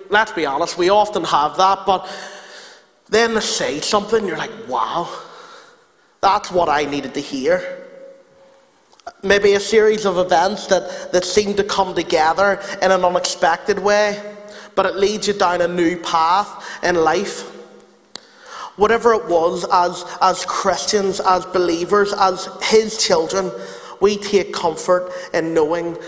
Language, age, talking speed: English, 30-49, 145 wpm